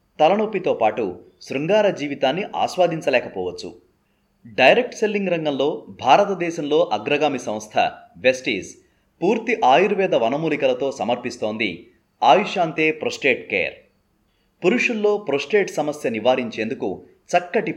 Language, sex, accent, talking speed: Telugu, male, native, 80 wpm